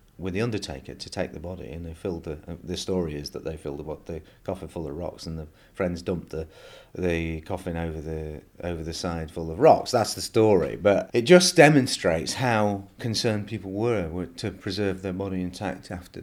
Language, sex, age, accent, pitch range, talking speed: English, male, 30-49, British, 85-100 Hz, 210 wpm